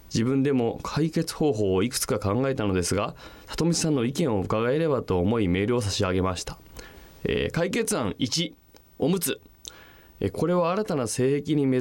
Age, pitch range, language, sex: 20-39, 100-160 Hz, Japanese, male